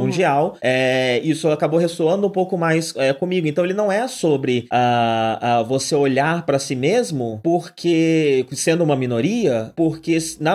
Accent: Brazilian